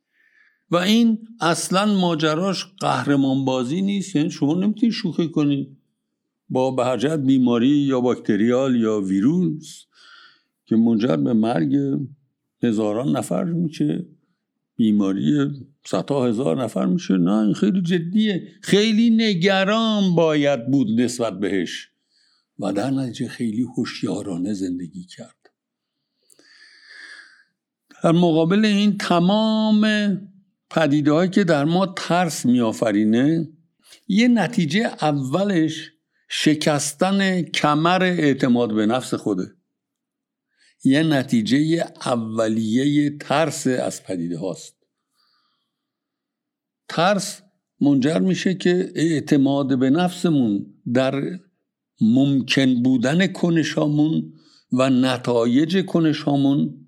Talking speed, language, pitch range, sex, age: 90 wpm, Persian, 130-195 Hz, male, 60-79